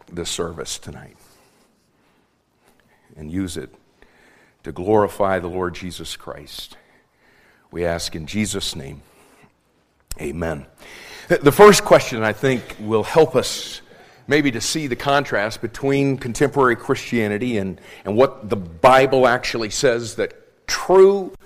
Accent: American